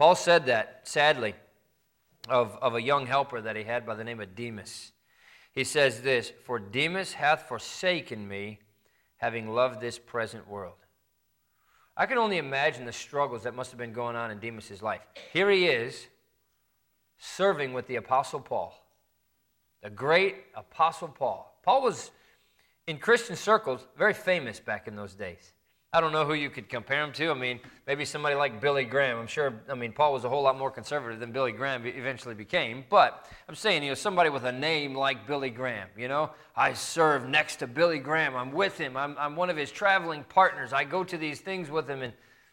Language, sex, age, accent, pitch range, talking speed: English, male, 40-59, American, 120-155 Hz, 195 wpm